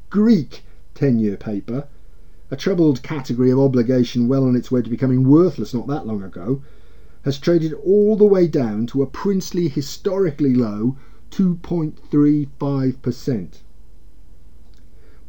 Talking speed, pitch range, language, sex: 120 wpm, 115-160 Hz, English, male